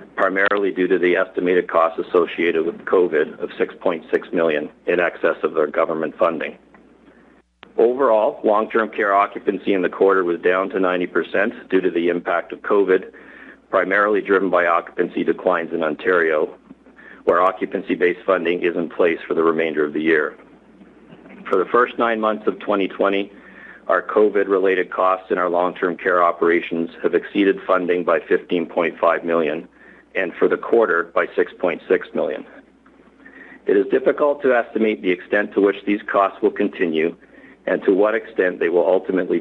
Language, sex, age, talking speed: English, male, 50-69, 155 wpm